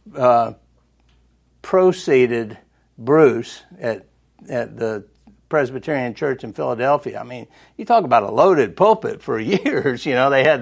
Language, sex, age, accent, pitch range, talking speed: English, male, 60-79, American, 125-155 Hz, 135 wpm